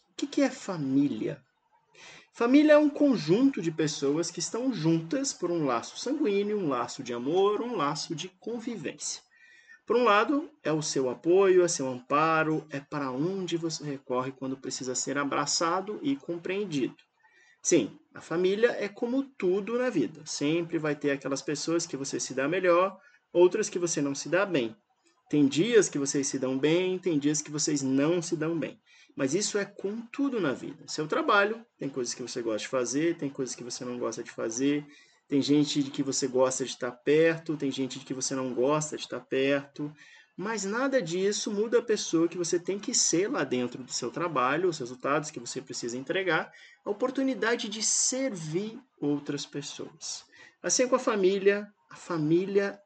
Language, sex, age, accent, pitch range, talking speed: Portuguese, male, 20-39, Brazilian, 140-210 Hz, 185 wpm